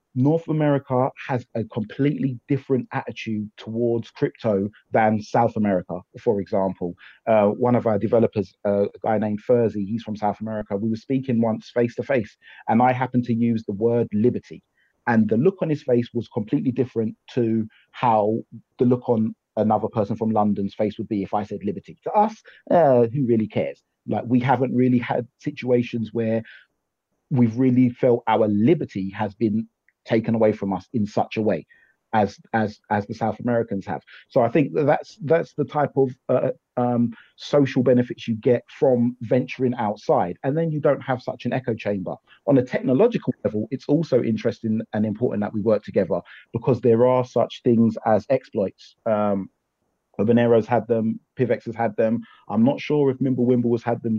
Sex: male